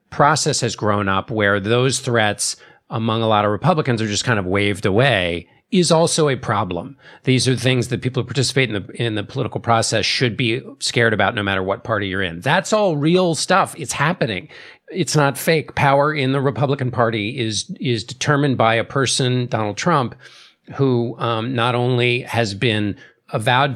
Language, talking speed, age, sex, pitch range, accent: English, 185 wpm, 50-69, male, 115-145 Hz, American